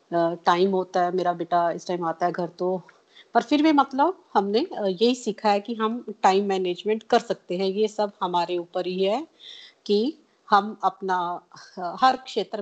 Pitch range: 175-205 Hz